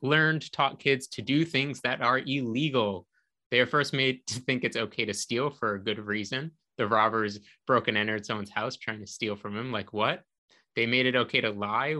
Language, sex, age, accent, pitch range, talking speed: English, male, 20-39, American, 105-135 Hz, 215 wpm